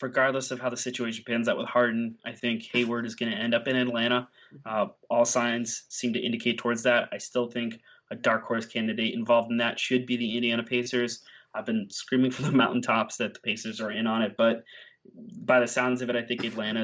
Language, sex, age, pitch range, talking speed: English, male, 20-39, 110-125 Hz, 230 wpm